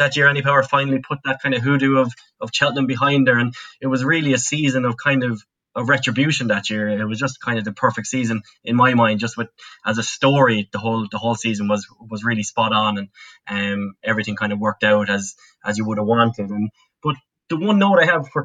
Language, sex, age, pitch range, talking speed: English, male, 10-29, 115-145 Hz, 245 wpm